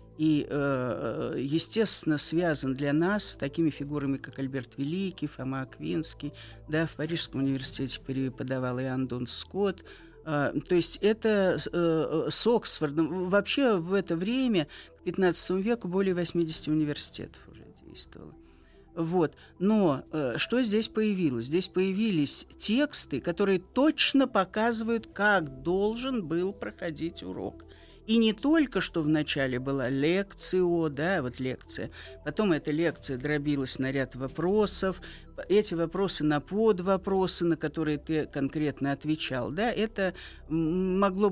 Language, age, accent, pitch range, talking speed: Russian, 50-69, native, 135-190 Hz, 120 wpm